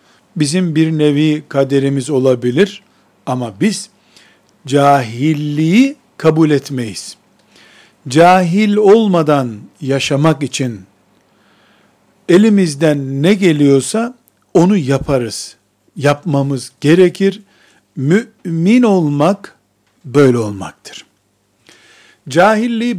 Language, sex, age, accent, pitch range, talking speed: Turkish, male, 50-69, native, 130-185 Hz, 70 wpm